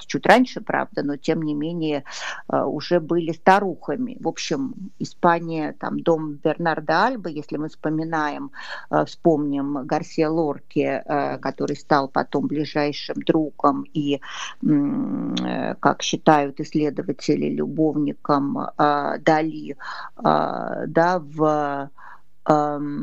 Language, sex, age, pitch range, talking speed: Russian, female, 50-69, 150-175 Hz, 90 wpm